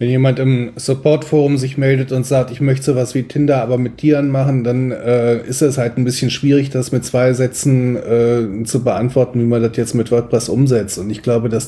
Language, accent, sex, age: German, German, male, 30-49